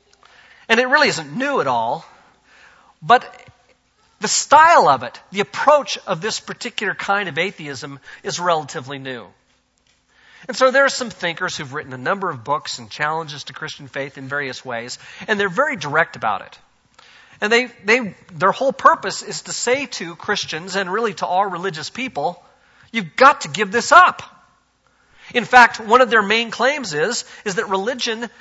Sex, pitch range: male, 165-245 Hz